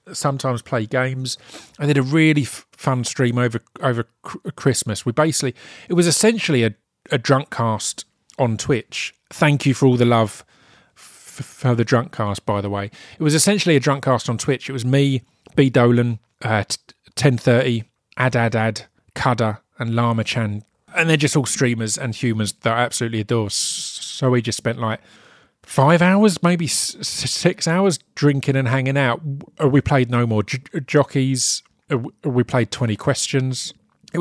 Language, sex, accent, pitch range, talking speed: English, male, British, 115-145 Hz, 175 wpm